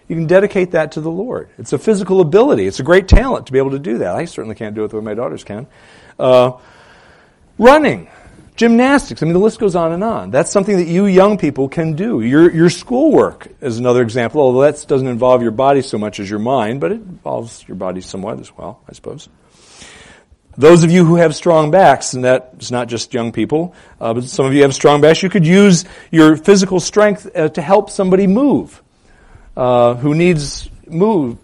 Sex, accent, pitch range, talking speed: male, American, 120-180 Hz, 215 wpm